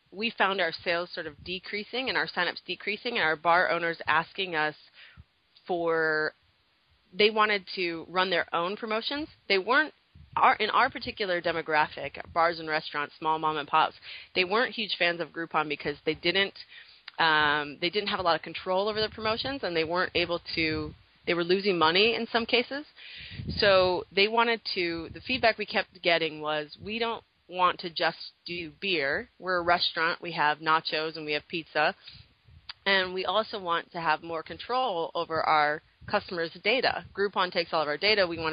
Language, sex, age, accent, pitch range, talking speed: English, female, 30-49, American, 160-210 Hz, 180 wpm